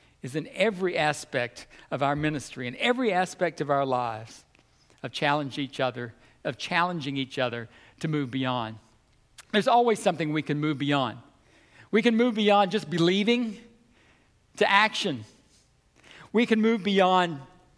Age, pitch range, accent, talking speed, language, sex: 60-79, 145-210 Hz, American, 145 wpm, English, male